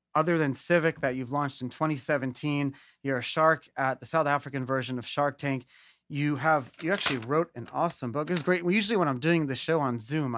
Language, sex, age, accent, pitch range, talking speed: English, male, 30-49, American, 130-165 Hz, 220 wpm